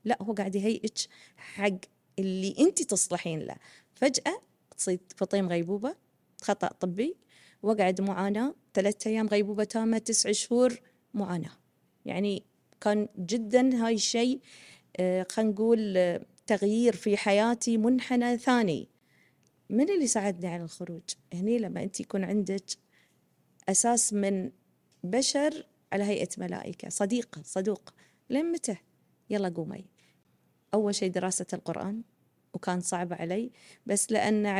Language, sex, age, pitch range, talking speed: Arabic, female, 30-49, 180-230 Hz, 120 wpm